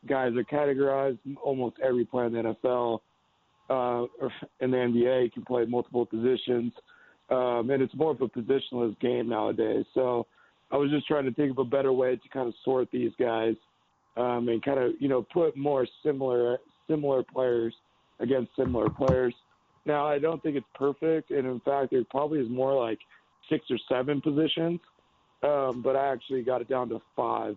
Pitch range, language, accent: 120-135 Hz, English, American